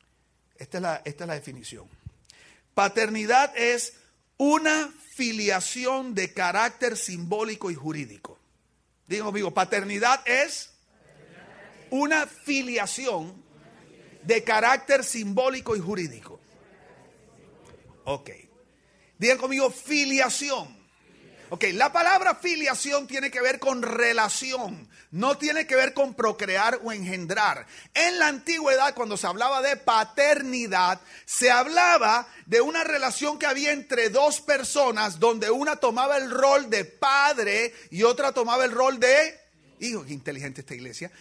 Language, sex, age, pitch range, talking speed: Spanish, male, 40-59, 215-275 Hz, 120 wpm